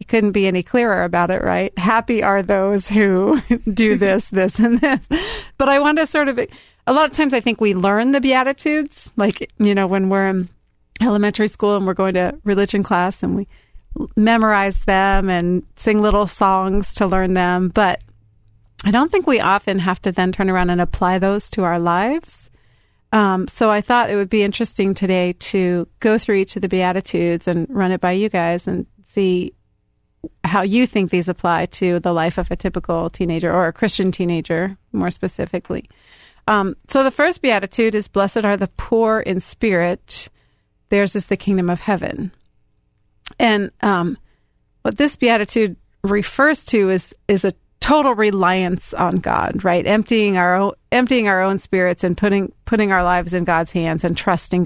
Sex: female